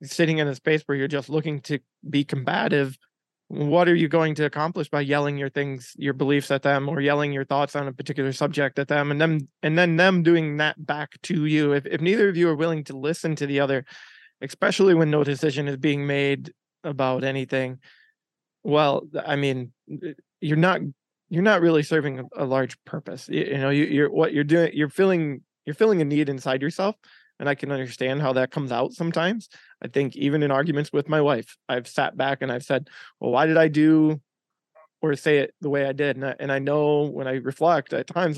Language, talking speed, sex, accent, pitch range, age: English, 215 wpm, male, American, 135-155 Hz, 20-39